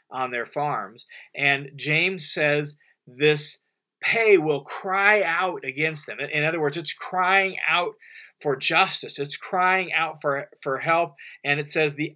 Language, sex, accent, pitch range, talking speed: English, male, American, 140-165 Hz, 155 wpm